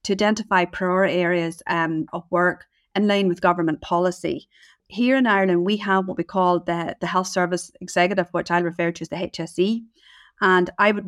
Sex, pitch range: female, 175-195 Hz